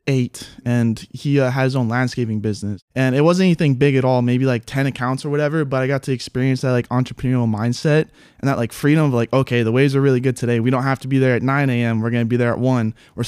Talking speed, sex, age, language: 270 wpm, male, 20-39, English